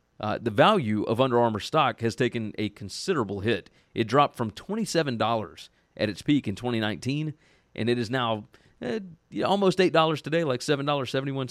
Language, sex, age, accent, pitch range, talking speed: English, male, 30-49, American, 105-130 Hz, 180 wpm